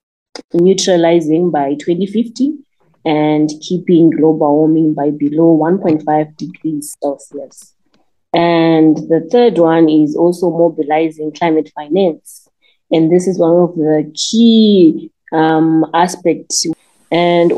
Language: English